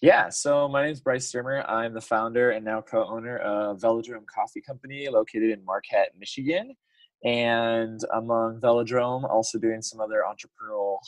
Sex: male